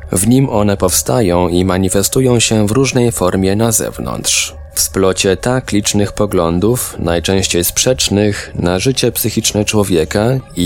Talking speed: 135 wpm